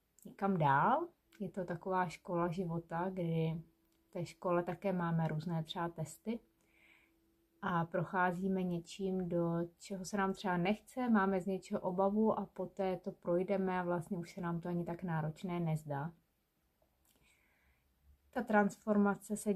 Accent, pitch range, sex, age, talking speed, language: native, 170-190 Hz, female, 30-49, 140 wpm, Czech